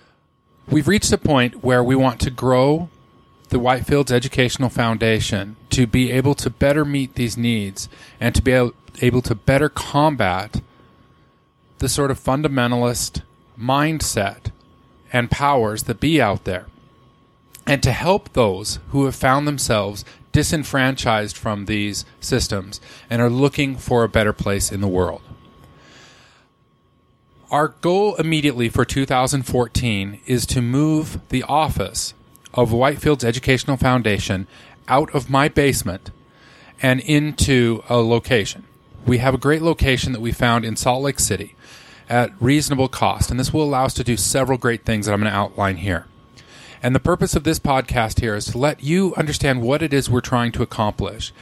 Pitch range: 110-135 Hz